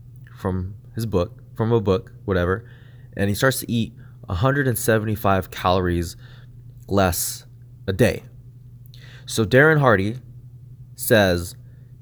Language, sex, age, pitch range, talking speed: English, male, 20-39, 105-125 Hz, 105 wpm